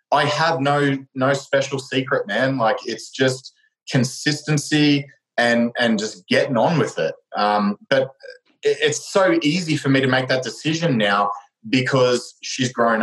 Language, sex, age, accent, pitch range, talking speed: English, male, 20-39, Australian, 120-150 Hz, 150 wpm